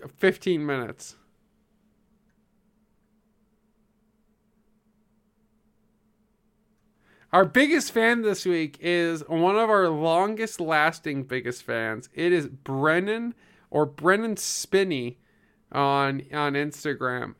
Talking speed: 85 wpm